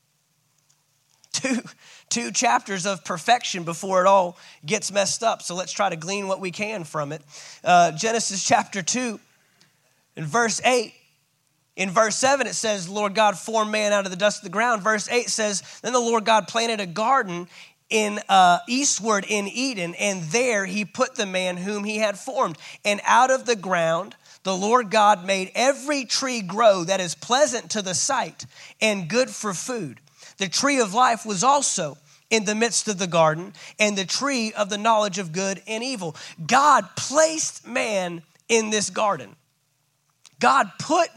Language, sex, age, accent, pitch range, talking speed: English, male, 30-49, American, 185-250 Hz, 180 wpm